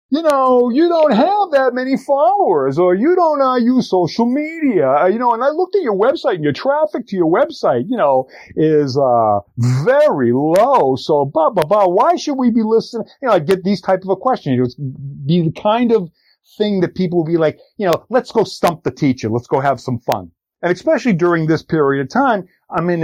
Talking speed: 225 wpm